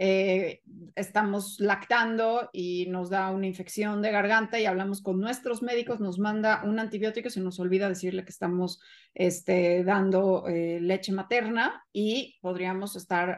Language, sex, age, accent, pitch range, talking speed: Spanish, female, 30-49, Mexican, 180-215 Hz, 145 wpm